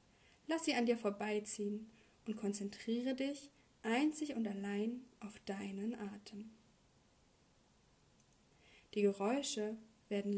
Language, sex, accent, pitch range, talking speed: German, female, German, 205-255 Hz, 100 wpm